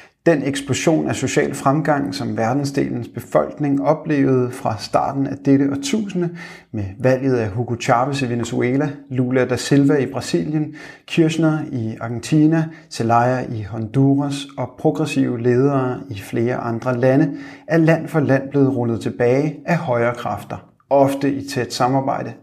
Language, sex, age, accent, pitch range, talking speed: Danish, male, 30-49, native, 120-145 Hz, 140 wpm